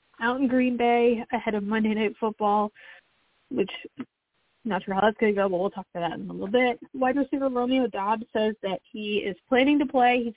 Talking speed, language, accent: 220 wpm, English, American